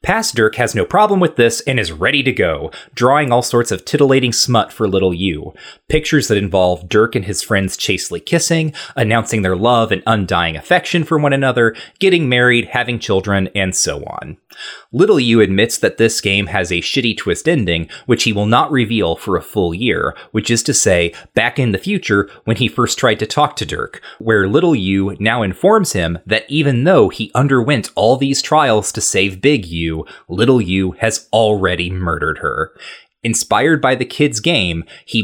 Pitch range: 100-140 Hz